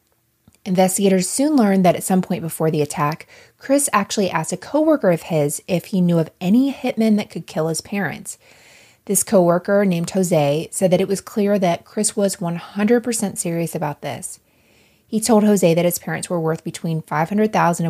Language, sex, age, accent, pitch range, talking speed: English, female, 20-39, American, 160-205 Hz, 180 wpm